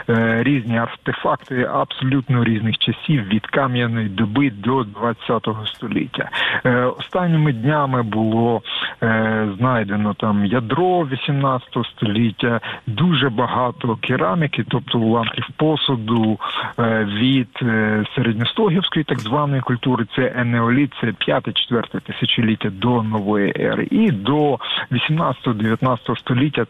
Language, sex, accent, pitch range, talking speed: Ukrainian, male, native, 115-135 Hz, 95 wpm